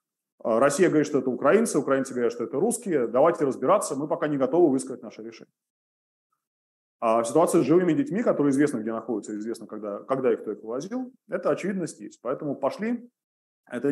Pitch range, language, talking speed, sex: 110-165 Hz, Russian, 175 wpm, male